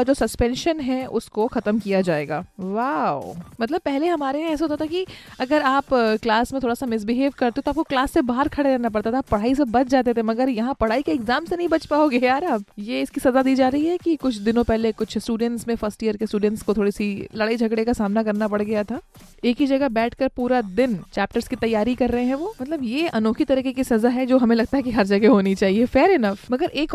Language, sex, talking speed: Hindi, female, 110 wpm